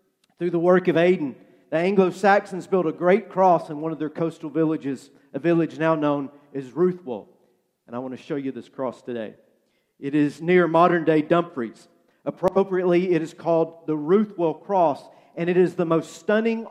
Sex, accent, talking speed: male, American, 185 wpm